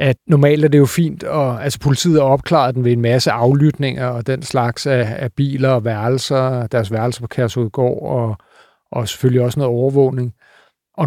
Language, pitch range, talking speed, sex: Danish, 125-140 Hz, 185 wpm, male